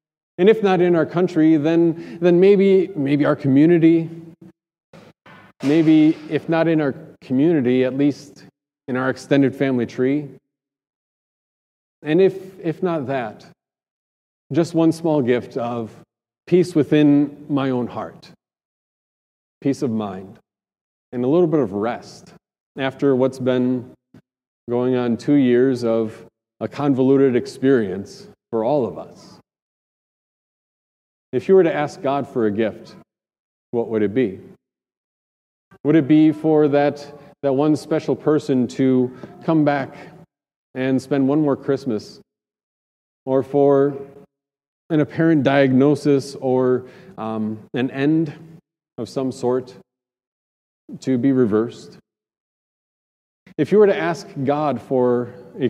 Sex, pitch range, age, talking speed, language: male, 125-155 Hz, 30-49, 125 wpm, English